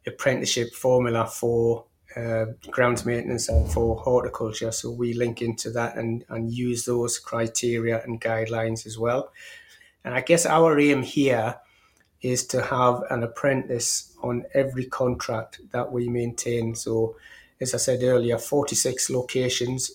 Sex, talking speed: male, 140 wpm